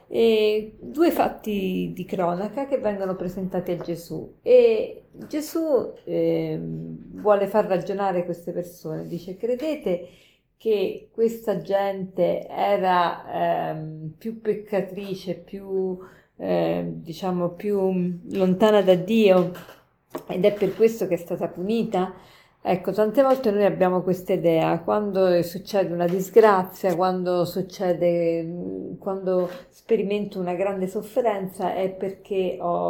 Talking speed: 115 wpm